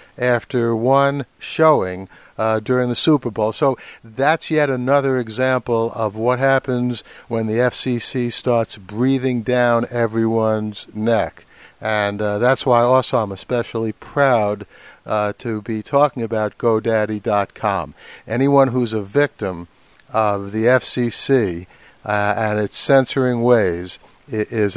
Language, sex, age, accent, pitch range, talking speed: English, male, 60-79, American, 110-135 Hz, 125 wpm